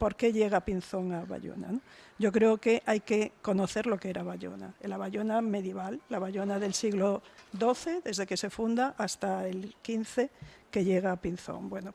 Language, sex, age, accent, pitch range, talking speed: Spanish, female, 50-69, Spanish, 190-225 Hz, 180 wpm